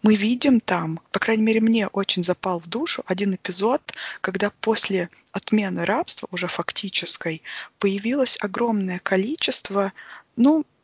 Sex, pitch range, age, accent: female, 190-235 Hz, 20-39, native